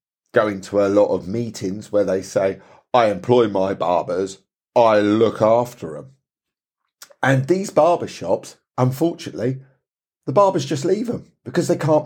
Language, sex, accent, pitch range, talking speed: English, male, British, 105-140 Hz, 150 wpm